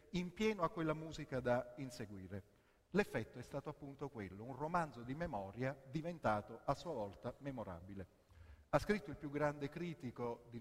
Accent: native